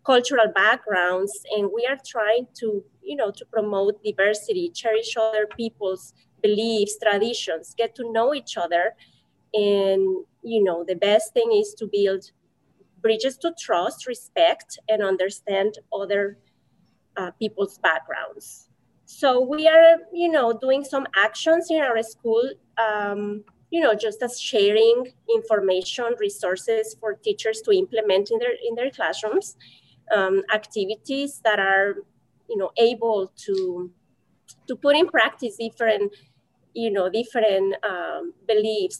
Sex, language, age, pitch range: female, English, 30-49, 200-265 Hz